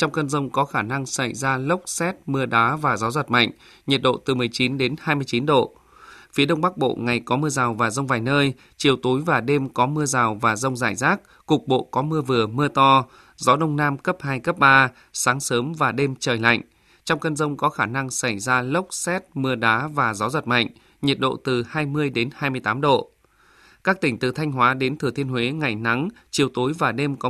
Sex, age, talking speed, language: male, 20-39, 230 wpm, Vietnamese